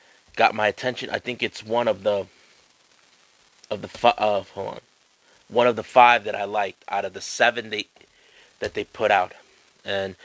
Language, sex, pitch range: English, male, 100-125 Hz